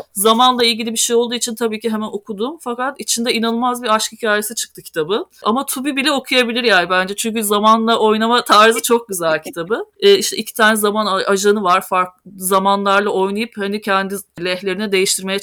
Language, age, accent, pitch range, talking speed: Turkish, 30-49, native, 195-235 Hz, 175 wpm